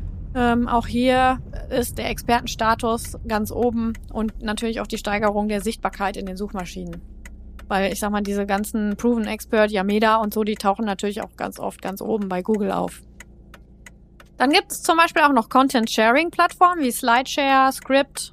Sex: female